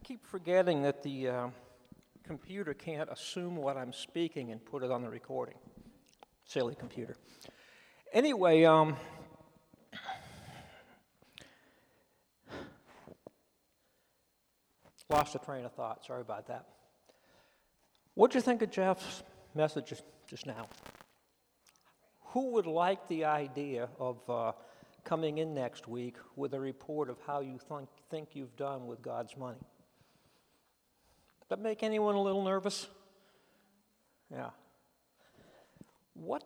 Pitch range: 130-185 Hz